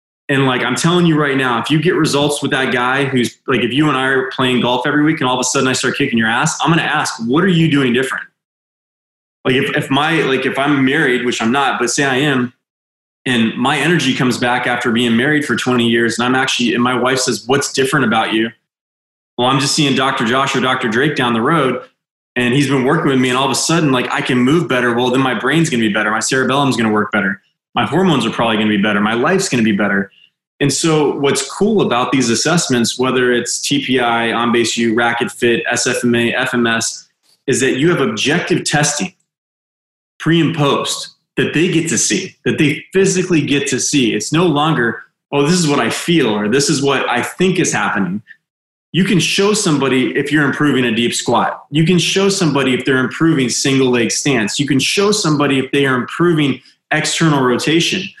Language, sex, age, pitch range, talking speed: English, male, 20-39, 120-150 Hz, 225 wpm